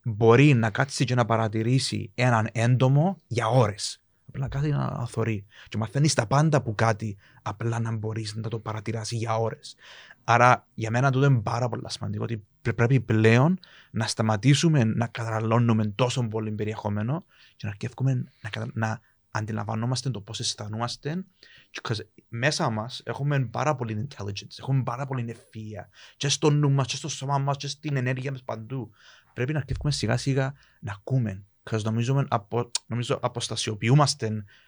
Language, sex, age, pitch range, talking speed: Greek, male, 30-49, 110-135 Hz, 115 wpm